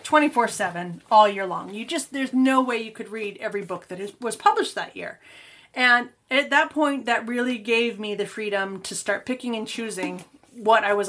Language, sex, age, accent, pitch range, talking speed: English, female, 30-49, American, 205-250 Hz, 210 wpm